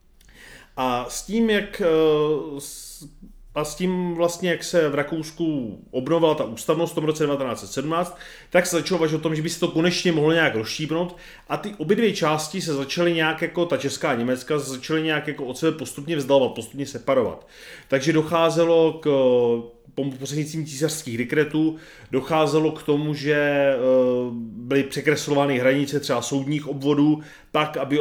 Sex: male